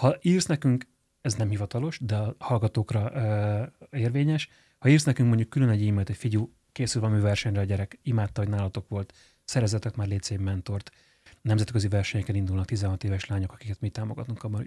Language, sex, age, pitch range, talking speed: Hungarian, male, 30-49, 110-135 Hz, 175 wpm